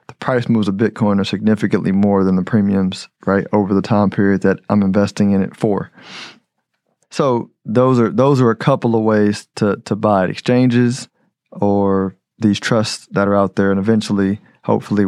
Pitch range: 105-125 Hz